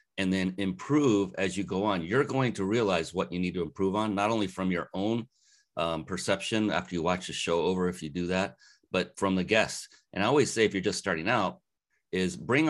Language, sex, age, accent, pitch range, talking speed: English, male, 30-49, American, 90-105 Hz, 230 wpm